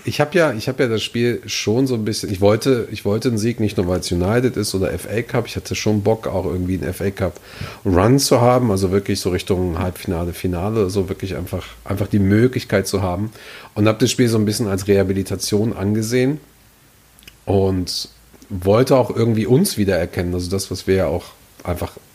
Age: 40-59